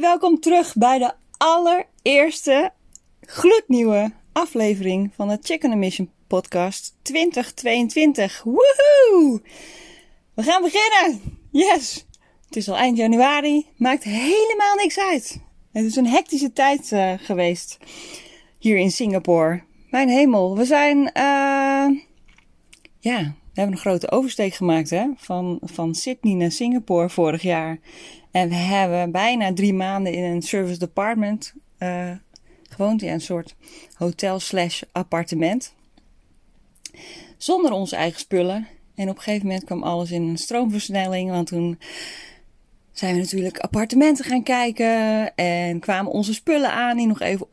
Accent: Dutch